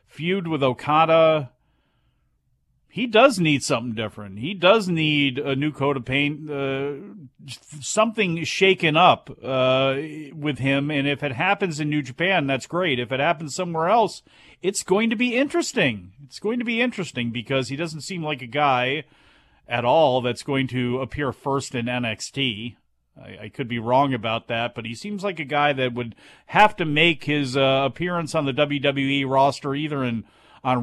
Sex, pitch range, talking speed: male, 130-180 Hz, 175 wpm